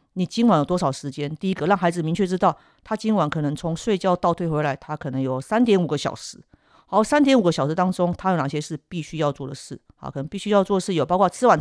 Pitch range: 145-180 Hz